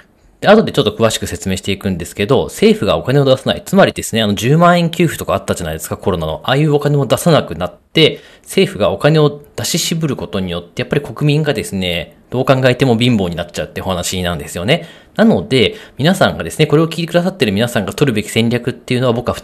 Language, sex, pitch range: Japanese, male, 105-160 Hz